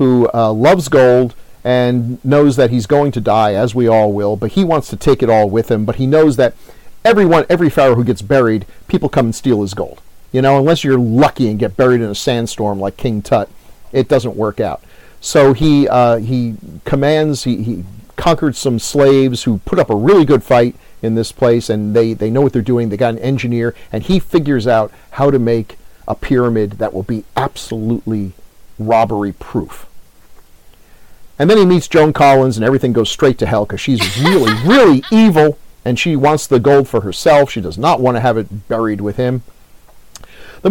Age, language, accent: 40-59, English, American